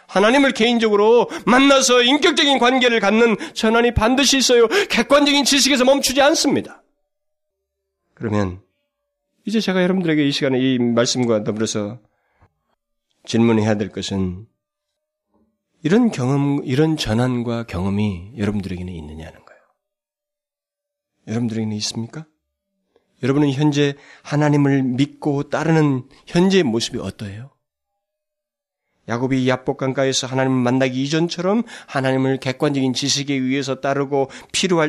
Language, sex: Korean, male